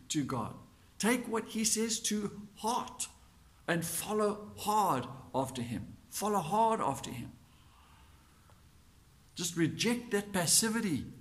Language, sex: English, male